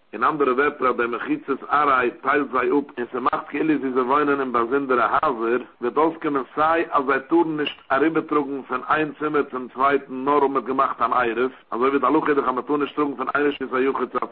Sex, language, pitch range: male, English, 130-150 Hz